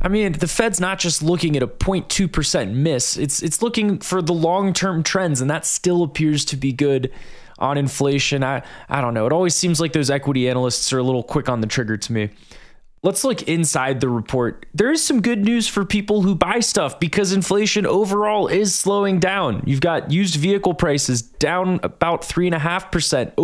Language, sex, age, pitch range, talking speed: English, male, 20-39, 140-190 Hz, 195 wpm